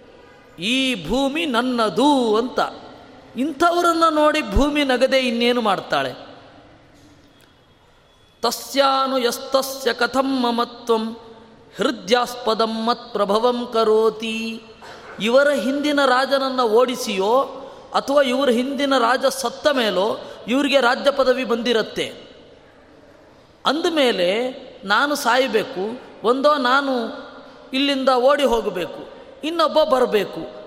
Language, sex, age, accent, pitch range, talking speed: Kannada, female, 20-39, native, 225-270 Hz, 80 wpm